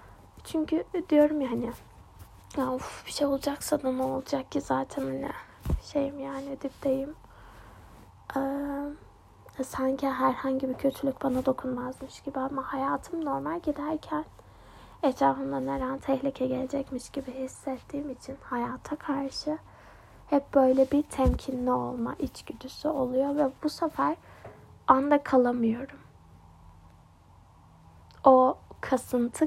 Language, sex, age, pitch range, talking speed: Turkish, female, 20-39, 240-285 Hz, 105 wpm